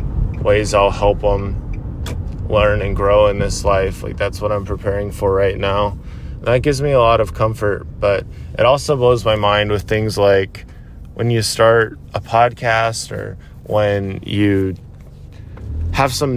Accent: American